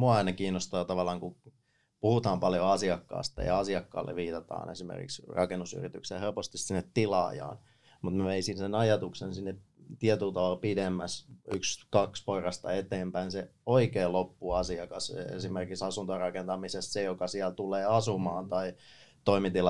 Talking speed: 115 wpm